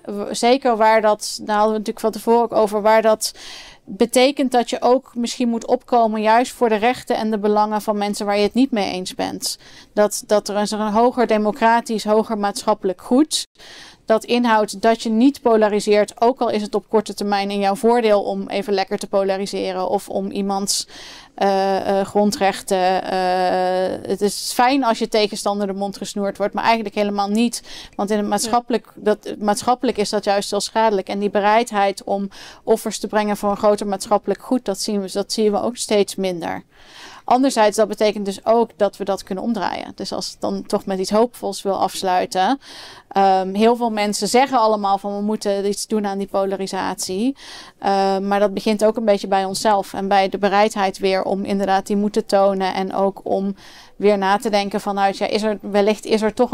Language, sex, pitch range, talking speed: Dutch, female, 200-225 Hz, 195 wpm